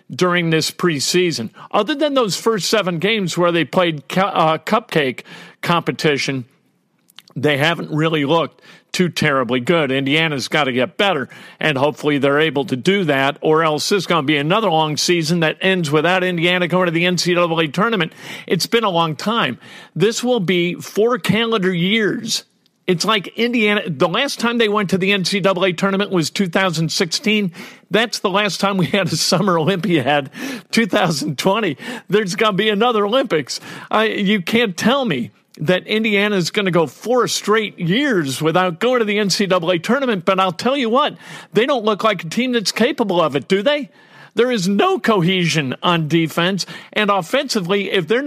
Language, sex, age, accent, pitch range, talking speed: English, male, 50-69, American, 165-215 Hz, 175 wpm